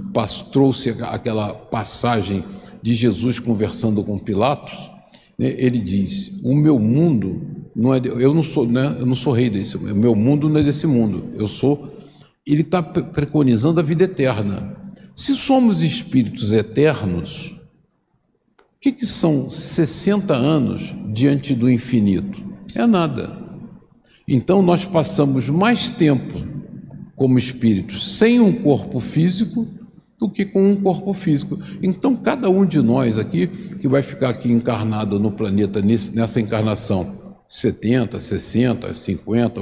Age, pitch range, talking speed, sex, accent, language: 50-69, 120-185 Hz, 140 wpm, male, Brazilian, Portuguese